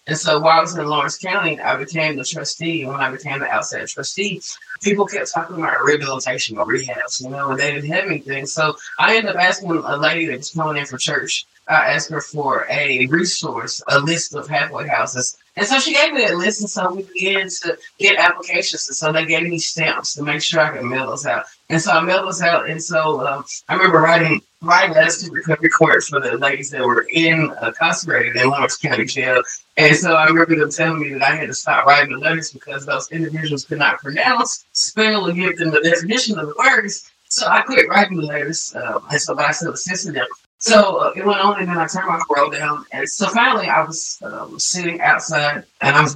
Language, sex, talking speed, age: English, female, 235 wpm, 20-39